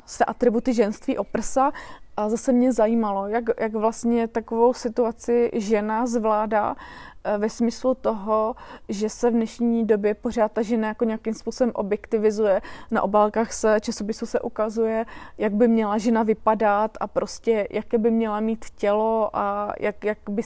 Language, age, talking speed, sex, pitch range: Slovak, 20-39, 155 wpm, female, 215-240 Hz